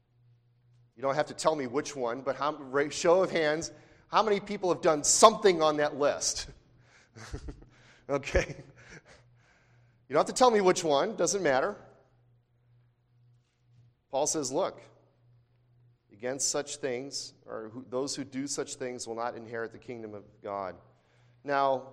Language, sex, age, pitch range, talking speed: English, male, 40-59, 120-150 Hz, 140 wpm